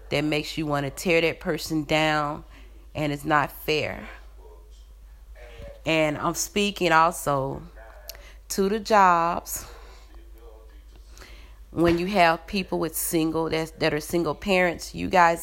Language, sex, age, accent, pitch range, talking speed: English, female, 30-49, American, 150-180 Hz, 130 wpm